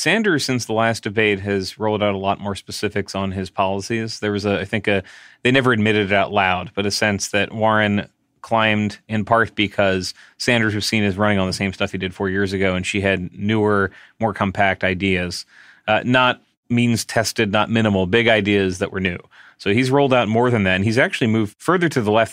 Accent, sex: American, male